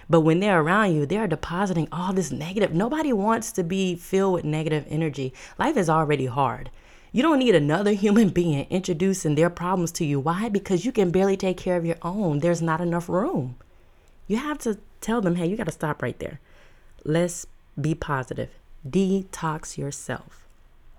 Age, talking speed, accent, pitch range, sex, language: 20-39, 185 wpm, American, 150-205 Hz, female, English